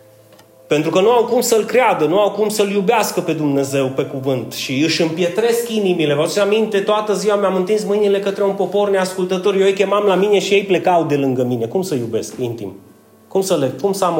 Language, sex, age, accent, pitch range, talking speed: Romanian, male, 30-49, native, 145-210 Hz, 225 wpm